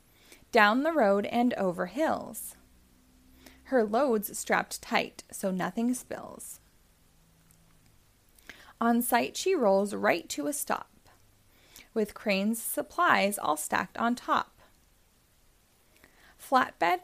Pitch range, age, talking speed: 190-280 Hz, 20-39, 100 wpm